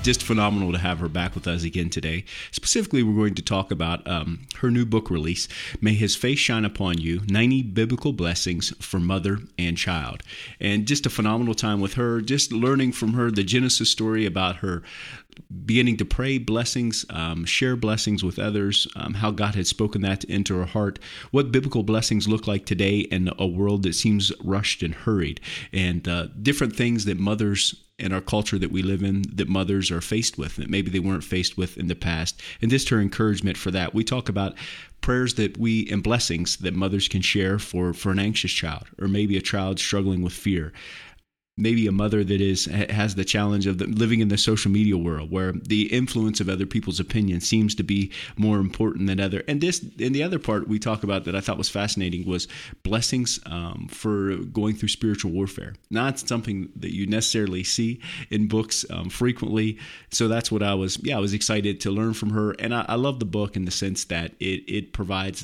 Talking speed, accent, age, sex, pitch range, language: 210 wpm, American, 30-49, male, 95-110 Hz, English